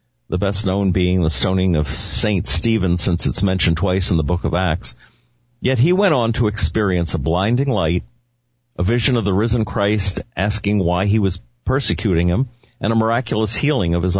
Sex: male